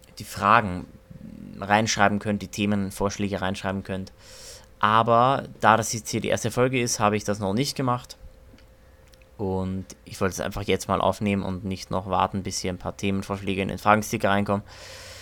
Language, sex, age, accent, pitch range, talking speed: German, male, 20-39, German, 95-115 Hz, 175 wpm